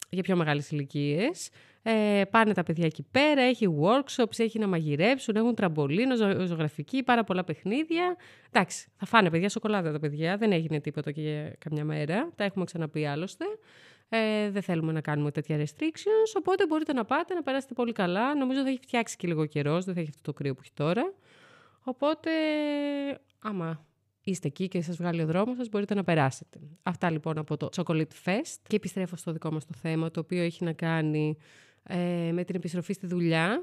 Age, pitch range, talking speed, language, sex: 20-39, 160-245 Hz, 185 wpm, Greek, female